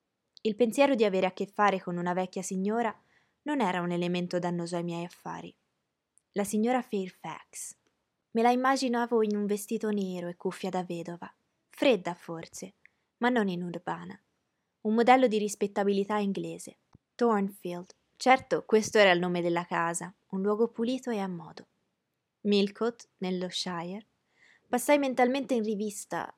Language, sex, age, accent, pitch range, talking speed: Italian, female, 20-39, native, 180-230 Hz, 150 wpm